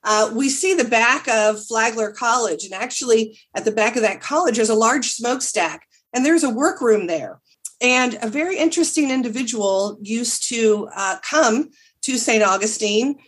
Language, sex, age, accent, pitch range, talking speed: English, female, 40-59, American, 215-270 Hz, 165 wpm